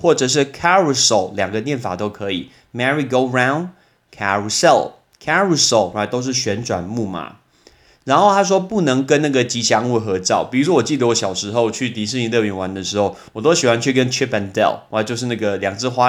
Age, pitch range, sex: 30-49, 110-140 Hz, male